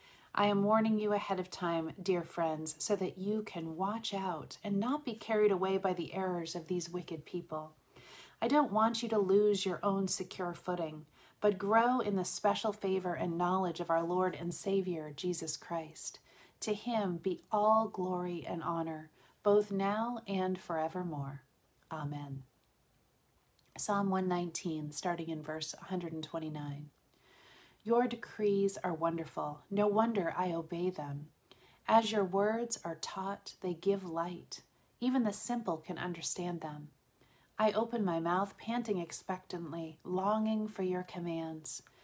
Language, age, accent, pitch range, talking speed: English, 40-59, American, 165-205 Hz, 145 wpm